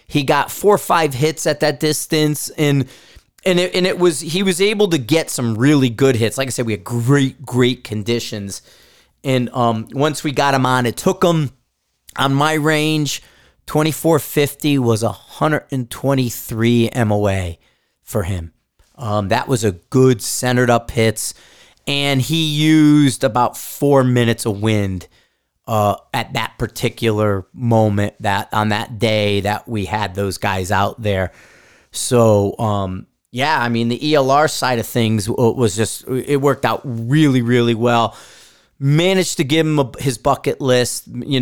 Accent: American